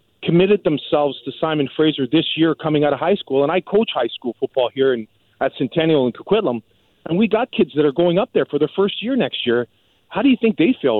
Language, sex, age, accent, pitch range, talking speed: English, male, 40-59, American, 130-185 Hz, 245 wpm